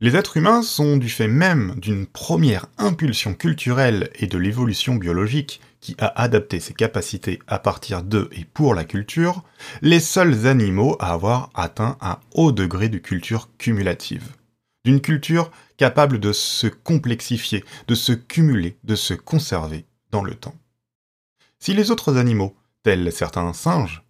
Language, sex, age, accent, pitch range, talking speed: French, male, 30-49, French, 100-135 Hz, 150 wpm